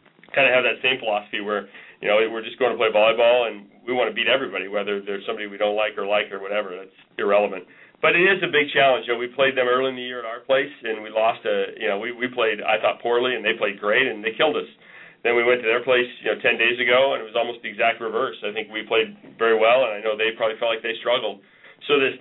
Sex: male